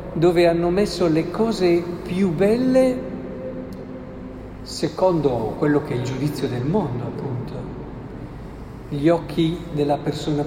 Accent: native